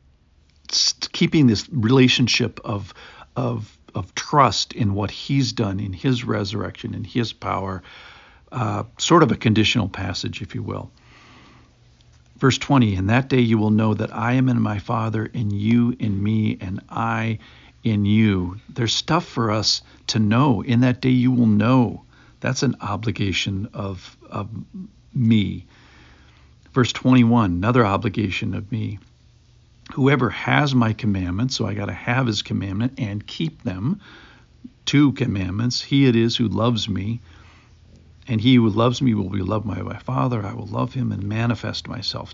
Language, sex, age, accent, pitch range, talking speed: English, male, 50-69, American, 105-125 Hz, 160 wpm